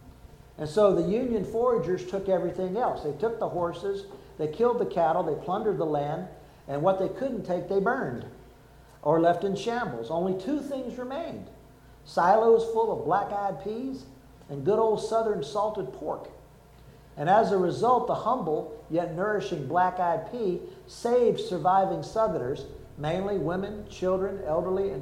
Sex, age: male, 50-69